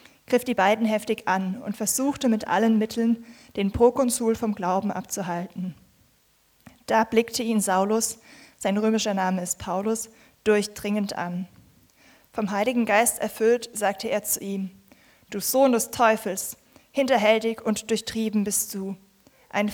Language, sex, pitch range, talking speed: German, female, 200-230 Hz, 135 wpm